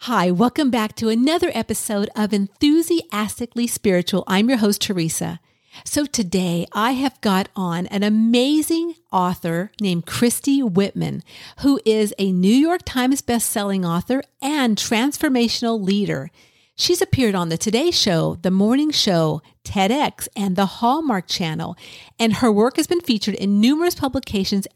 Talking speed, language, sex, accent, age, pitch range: 145 wpm, English, female, American, 50-69, 185-265 Hz